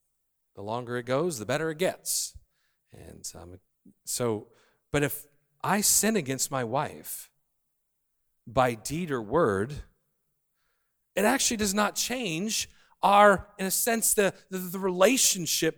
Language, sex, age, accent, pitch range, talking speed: English, male, 40-59, American, 145-210 Hz, 135 wpm